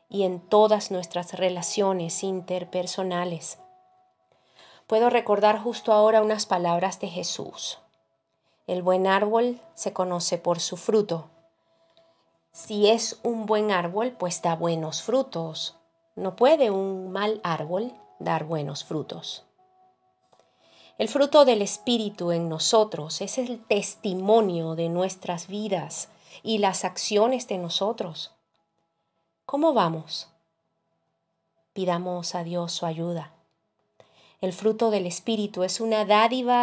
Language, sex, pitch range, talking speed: Spanish, female, 165-220 Hz, 115 wpm